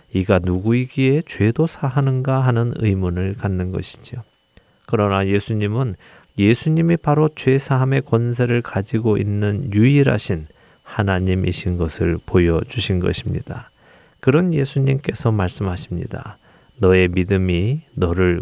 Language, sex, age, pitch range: Korean, male, 40-59, 95-130 Hz